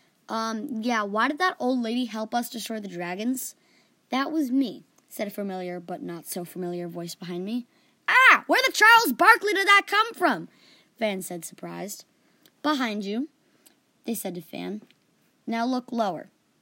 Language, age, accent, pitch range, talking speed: English, 20-39, American, 205-280 Hz, 165 wpm